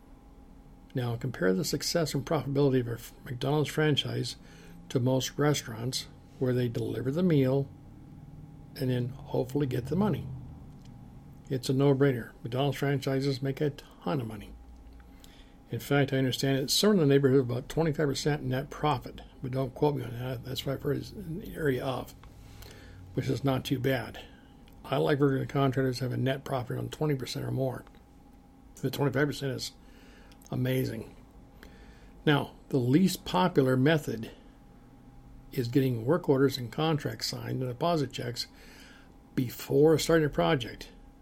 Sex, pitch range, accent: male, 130-145 Hz, American